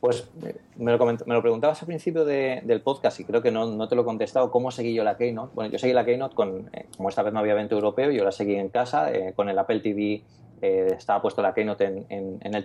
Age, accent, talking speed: 30-49, Spanish, 275 wpm